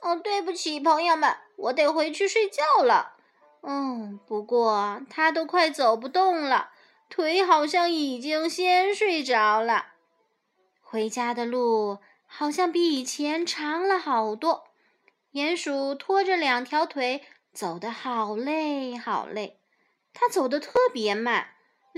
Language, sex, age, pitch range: Chinese, female, 20-39, 230-360 Hz